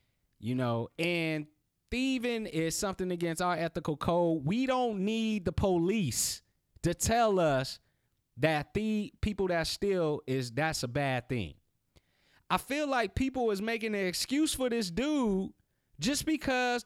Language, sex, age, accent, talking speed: English, male, 30-49, American, 145 wpm